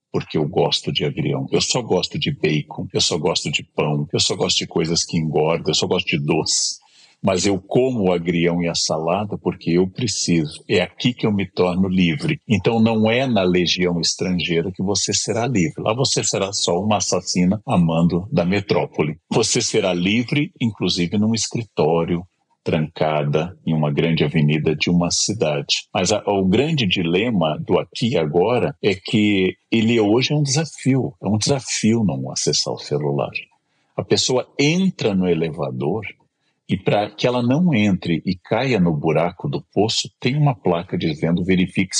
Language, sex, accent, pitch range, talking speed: Portuguese, male, Brazilian, 85-115 Hz, 175 wpm